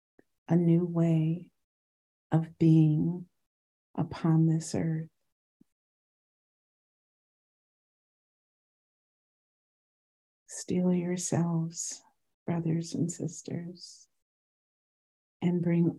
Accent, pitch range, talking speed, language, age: American, 150-170 Hz, 55 wpm, English, 50-69